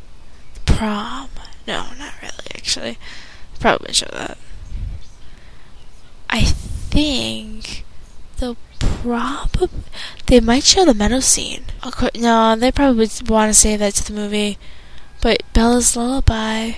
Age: 10-29